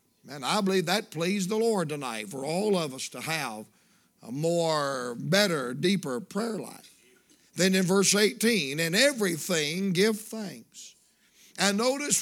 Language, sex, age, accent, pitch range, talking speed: English, male, 60-79, American, 165-215 Hz, 145 wpm